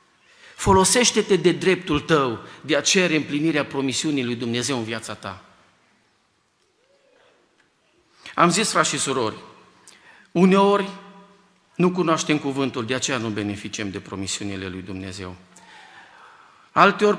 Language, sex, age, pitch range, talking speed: Romanian, male, 50-69, 130-190 Hz, 110 wpm